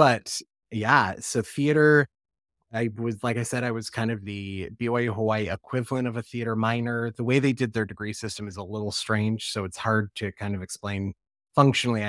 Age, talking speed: 30-49, 195 wpm